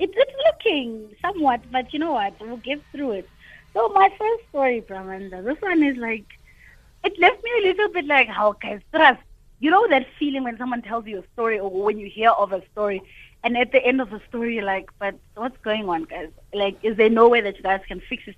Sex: female